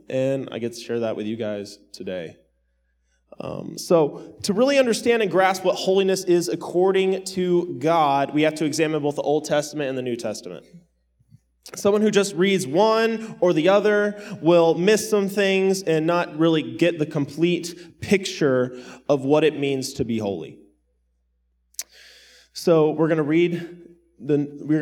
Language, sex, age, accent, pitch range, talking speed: English, male, 20-39, American, 125-180 Hz, 165 wpm